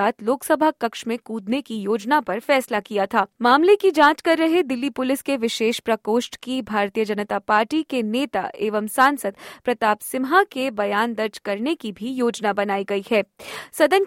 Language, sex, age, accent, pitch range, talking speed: Hindi, female, 20-39, native, 220-295 Hz, 175 wpm